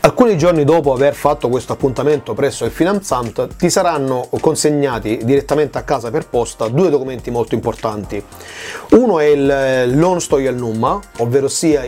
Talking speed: 150 wpm